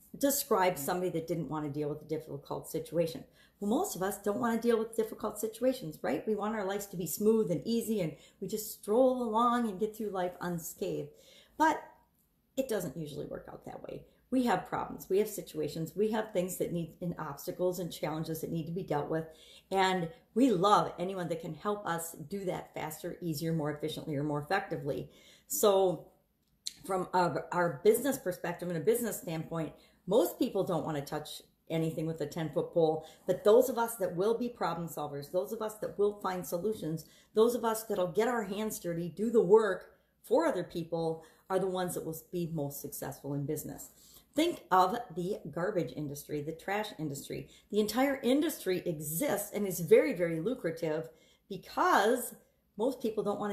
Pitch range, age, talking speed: 165-215 Hz, 40-59, 190 wpm